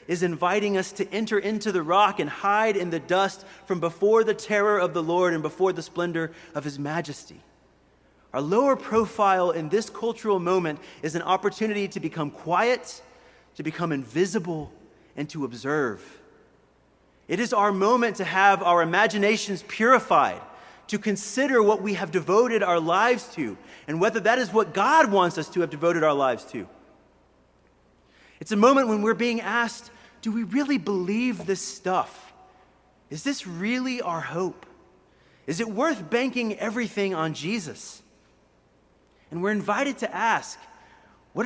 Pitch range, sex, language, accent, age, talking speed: 165-220 Hz, male, English, American, 30-49, 160 wpm